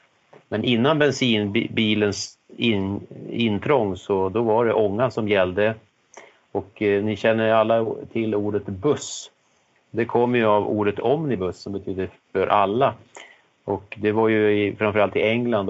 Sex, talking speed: male, 145 wpm